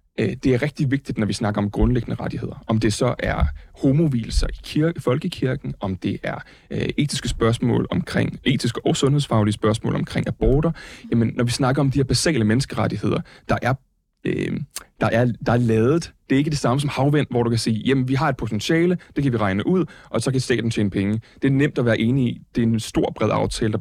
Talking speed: 225 wpm